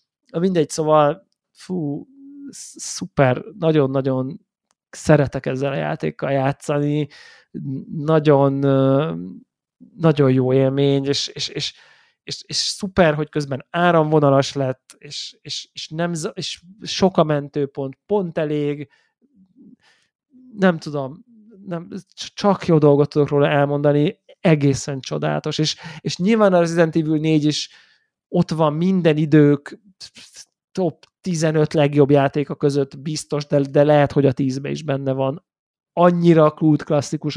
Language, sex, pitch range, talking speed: Hungarian, male, 140-165 Hz, 120 wpm